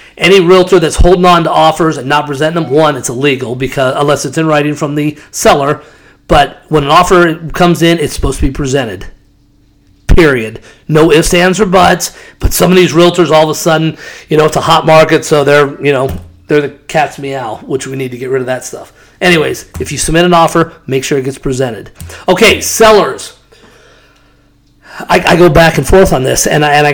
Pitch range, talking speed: 145-175 Hz, 215 wpm